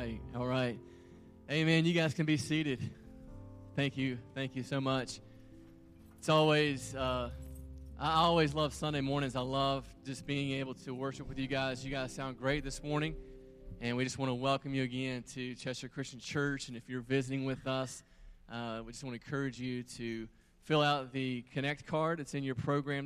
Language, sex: English, male